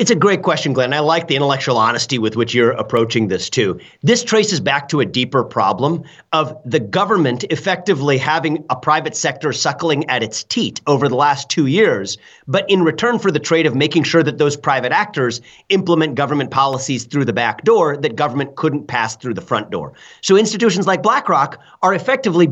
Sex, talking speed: male, 195 wpm